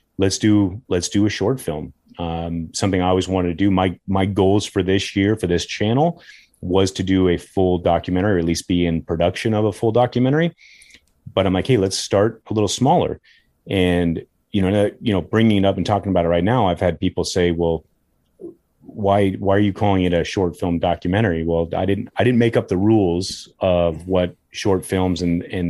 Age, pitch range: 30-49, 85-105 Hz